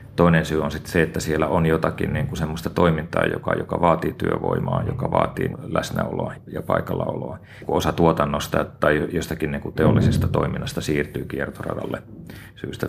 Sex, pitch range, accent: male, 75-90 Hz, native